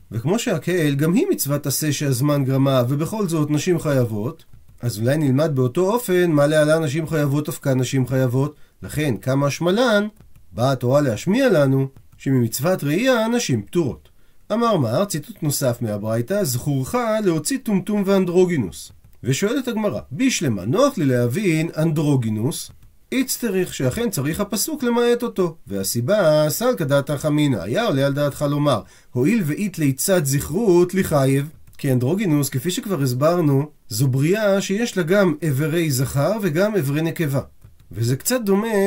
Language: Hebrew